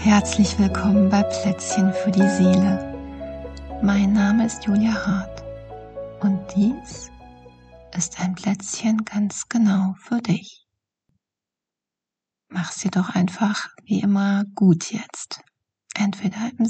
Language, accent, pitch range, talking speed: German, German, 190-210 Hz, 110 wpm